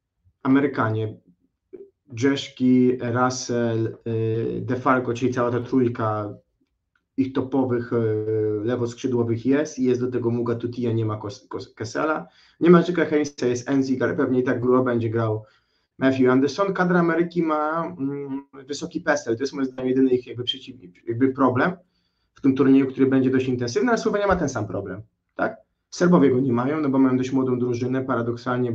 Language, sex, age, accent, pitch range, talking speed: Polish, male, 30-49, native, 120-140 Hz, 165 wpm